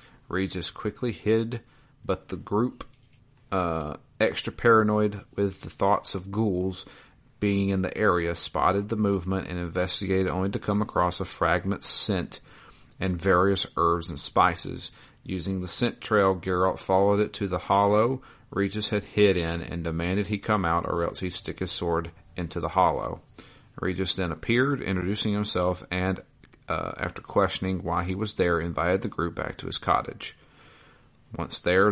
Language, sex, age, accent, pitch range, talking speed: English, male, 40-59, American, 85-105 Hz, 160 wpm